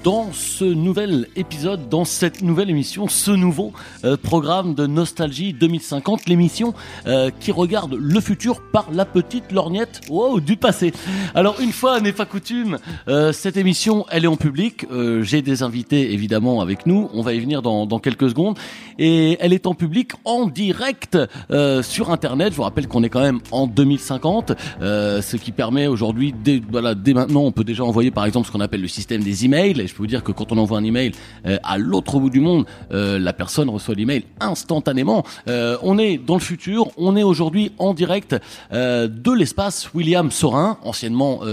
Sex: male